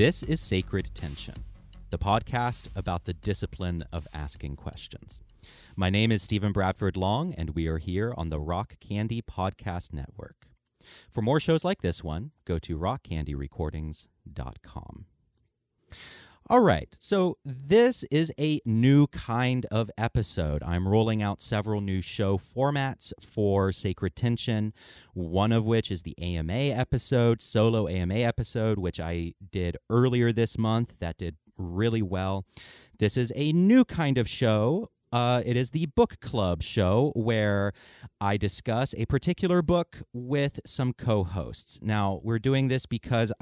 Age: 30-49